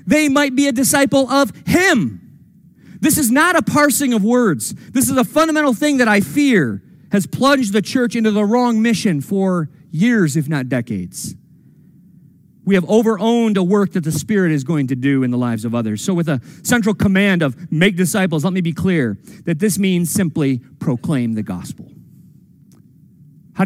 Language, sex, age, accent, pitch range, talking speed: English, male, 40-59, American, 155-205 Hz, 185 wpm